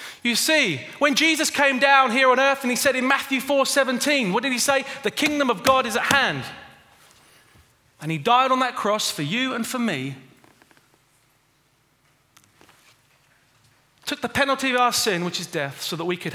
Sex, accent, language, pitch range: male, British, English, 155-255 Hz